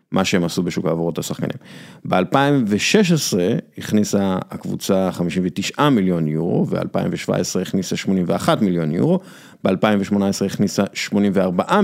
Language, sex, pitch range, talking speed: Hebrew, male, 90-115 Hz, 100 wpm